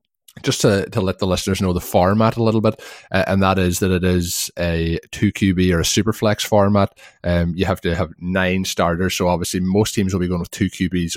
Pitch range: 85-95 Hz